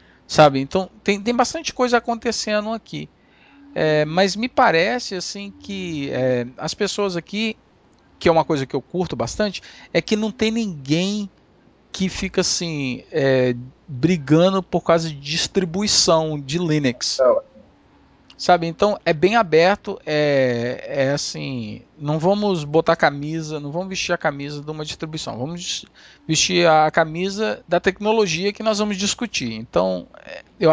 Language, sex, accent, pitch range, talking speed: Portuguese, male, Brazilian, 130-175 Hz, 145 wpm